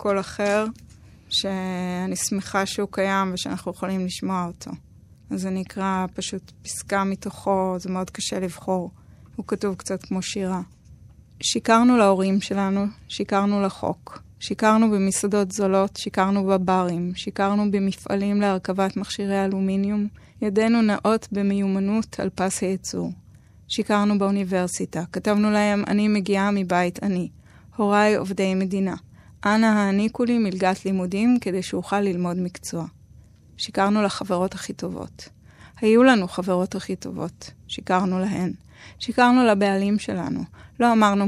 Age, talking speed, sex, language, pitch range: 20-39, 120 wpm, female, Hebrew, 185-210 Hz